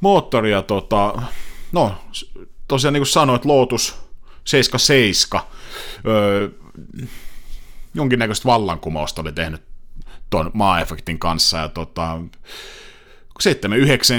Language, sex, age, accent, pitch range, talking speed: Finnish, male, 30-49, native, 90-135 Hz, 85 wpm